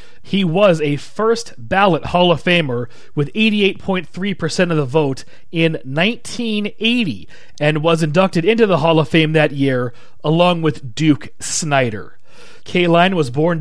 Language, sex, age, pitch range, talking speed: English, male, 30-49, 145-185 Hz, 135 wpm